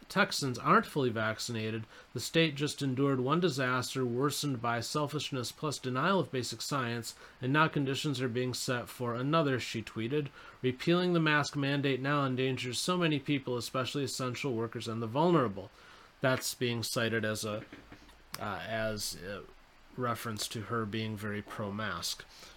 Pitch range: 110-135 Hz